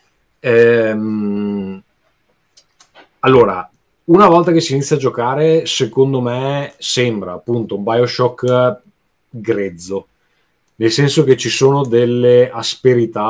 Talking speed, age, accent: 105 wpm, 30-49, native